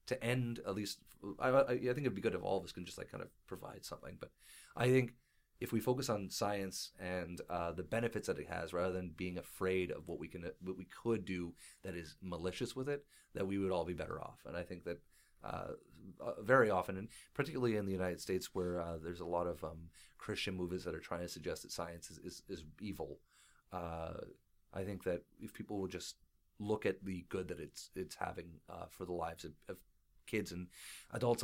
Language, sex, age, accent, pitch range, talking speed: English, male, 30-49, American, 85-100 Hz, 225 wpm